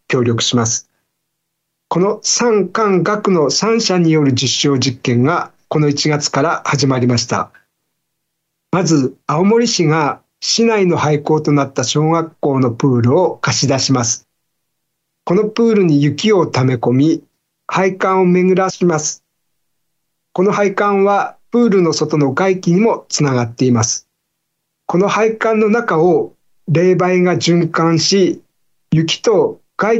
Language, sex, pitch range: Japanese, male, 140-190 Hz